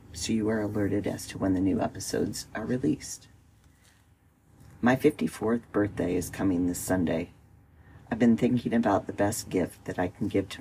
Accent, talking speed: American, 175 wpm